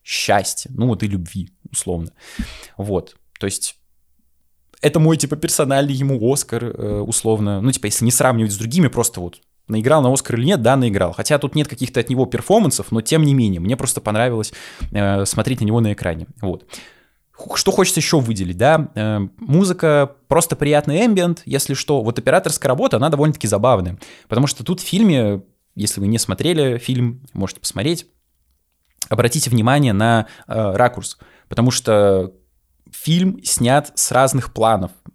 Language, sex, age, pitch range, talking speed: Russian, male, 20-39, 100-140 Hz, 160 wpm